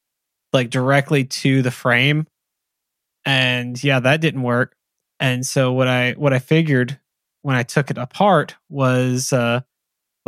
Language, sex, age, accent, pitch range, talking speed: English, male, 20-39, American, 130-160 Hz, 140 wpm